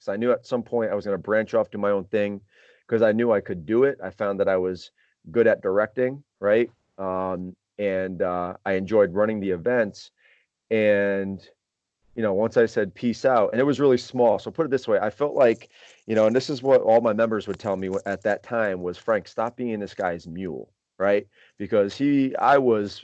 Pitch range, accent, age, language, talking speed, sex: 100-120 Hz, American, 30-49, English, 230 wpm, male